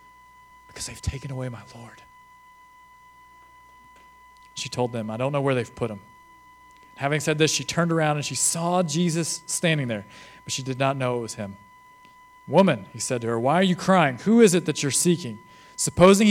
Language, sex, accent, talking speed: English, male, American, 190 wpm